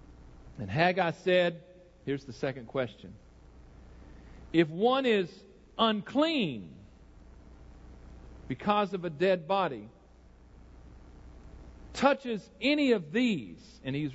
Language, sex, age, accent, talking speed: English, male, 50-69, American, 95 wpm